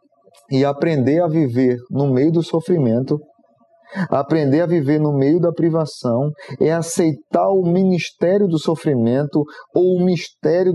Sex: male